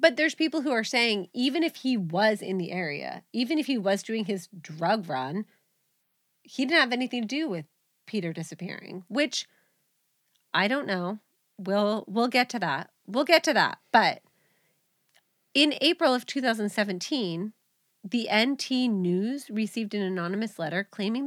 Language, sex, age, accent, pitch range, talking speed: English, female, 30-49, American, 175-240 Hz, 160 wpm